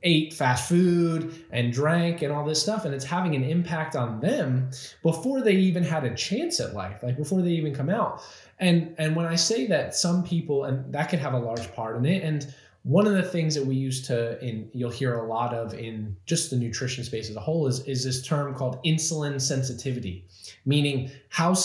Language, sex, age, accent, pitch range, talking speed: English, male, 20-39, American, 130-175 Hz, 220 wpm